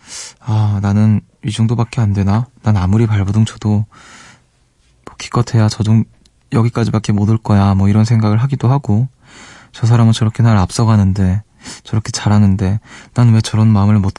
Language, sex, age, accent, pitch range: Korean, male, 20-39, native, 105-130 Hz